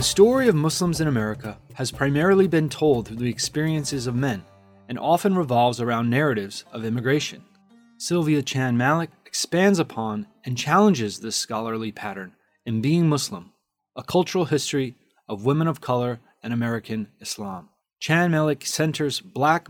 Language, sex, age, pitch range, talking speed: English, male, 30-49, 120-155 Hz, 145 wpm